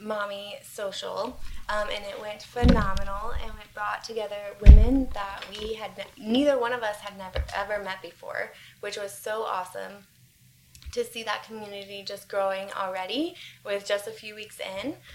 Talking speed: 160 wpm